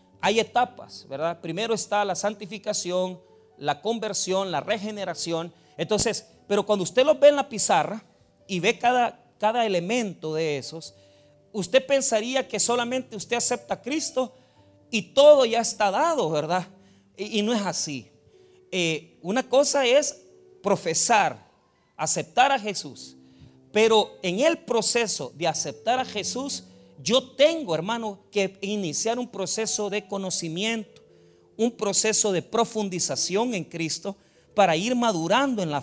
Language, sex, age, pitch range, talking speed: Spanish, male, 40-59, 170-240 Hz, 135 wpm